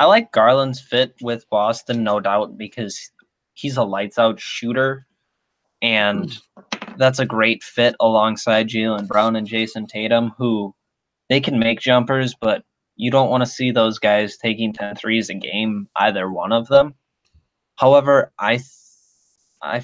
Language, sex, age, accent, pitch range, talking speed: English, male, 20-39, American, 110-130 Hz, 150 wpm